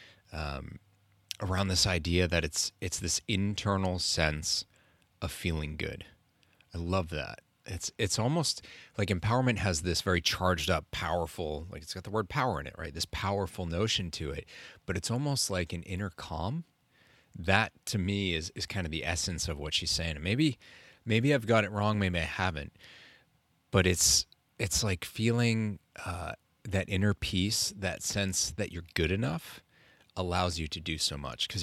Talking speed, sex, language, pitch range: 175 wpm, male, English, 85-100 Hz